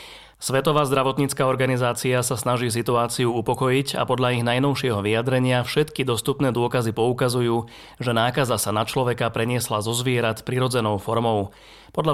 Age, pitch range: 30-49, 115-135 Hz